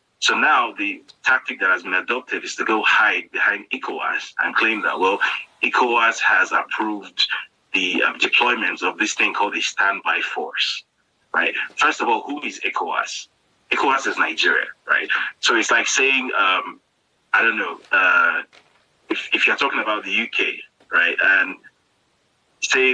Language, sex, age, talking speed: English, male, 30-49, 160 wpm